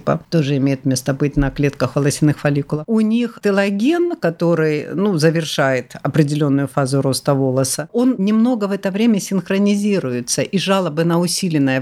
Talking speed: 140 wpm